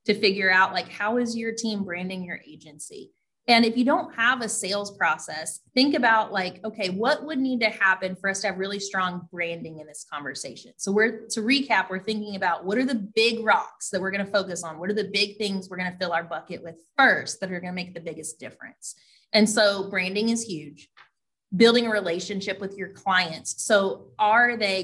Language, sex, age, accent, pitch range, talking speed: English, female, 30-49, American, 185-235 Hz, 215 wpm